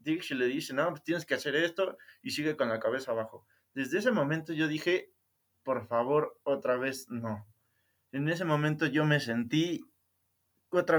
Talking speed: 170 wpm